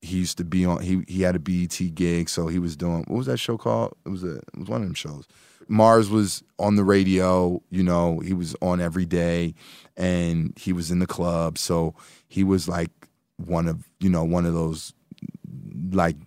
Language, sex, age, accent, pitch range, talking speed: English, male, 20-39, American, 85-95 Hz, 220 wpm